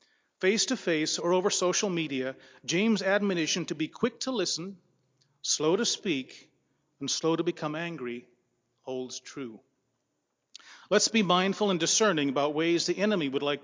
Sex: male